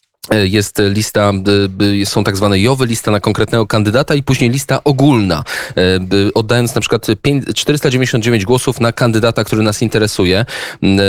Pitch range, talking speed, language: 95-130 Hz, 130 wpm, Polish